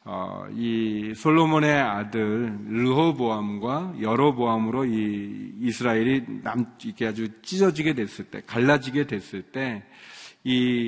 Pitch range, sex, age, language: 110-140 Hz, male, 40-59, Korean